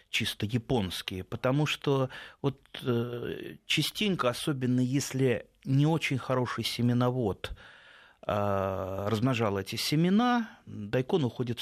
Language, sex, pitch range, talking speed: Russian, male, 100-130 Hz, 90 wpm